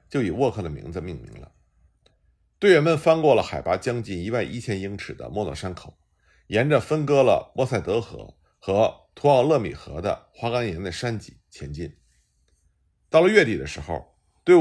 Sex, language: male, Chinese